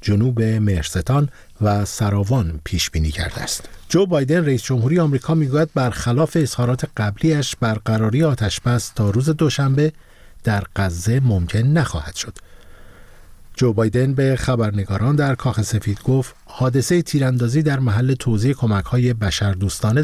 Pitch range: 105-135 Hz